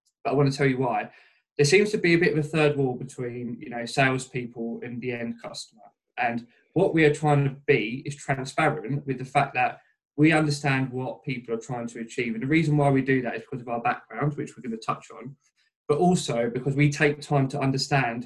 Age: 20-39